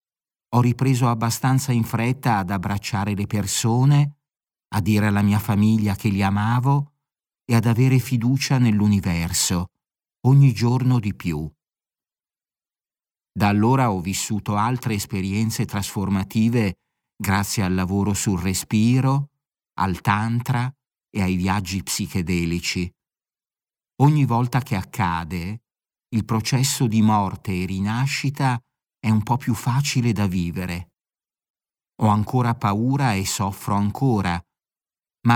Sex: male